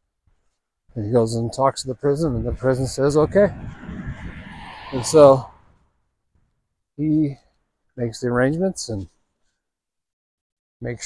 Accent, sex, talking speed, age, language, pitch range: American, male, 115 wpm, 50-69, English, 95-140 Hz